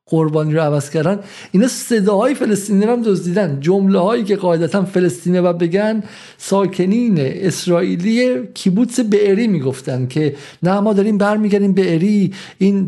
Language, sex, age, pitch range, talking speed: Persian, male, 50-69, 160-200 Hz, 125 wpm